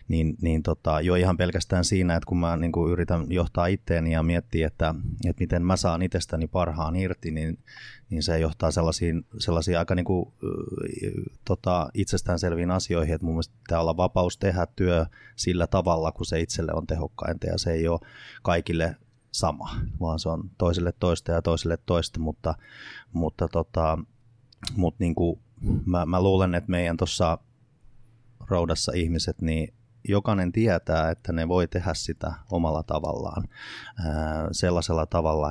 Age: 30-49